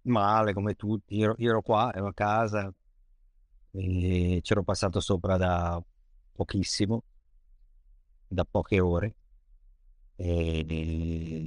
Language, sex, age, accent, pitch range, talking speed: Italian, male, 50-69, native, 85-105 Hz, 110 wpm